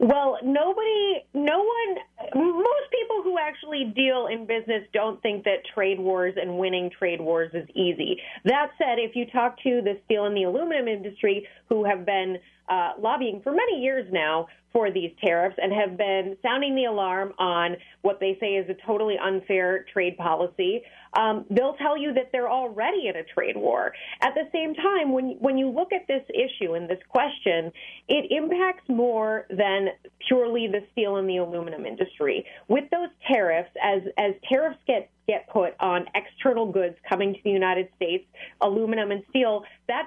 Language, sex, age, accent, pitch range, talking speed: English, female, 30-49, American, 195-280 Hz, 180 wpm